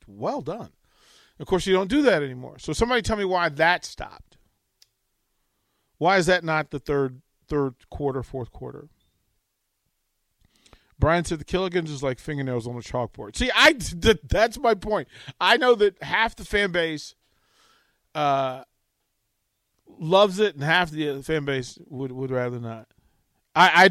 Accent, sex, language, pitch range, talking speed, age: American, male, English, 120-175 Hz, 155 wpm, 40-59